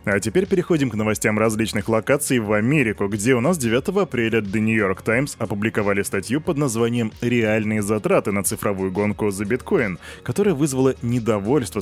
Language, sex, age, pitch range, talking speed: Russian, male, 20-39, 110-145 Hz, 160 wpm